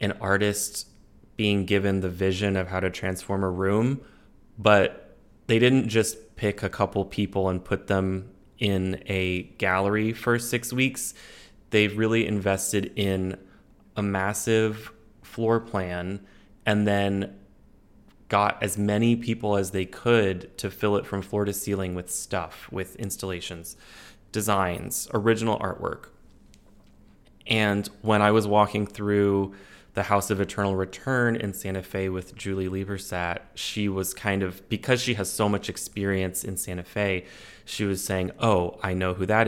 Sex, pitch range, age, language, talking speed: male, 95-105 Hz, 20-39, English, 150 wpm